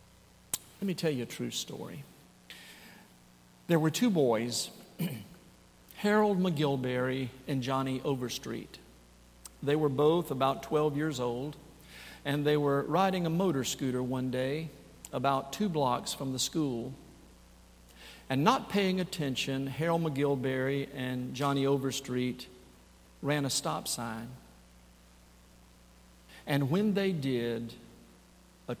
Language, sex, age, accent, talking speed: English, male, 50-69, American, 115 wpm